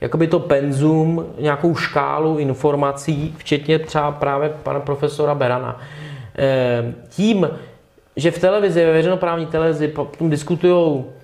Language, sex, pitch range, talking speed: Czech, male, 145-170 Hz, 105 wpm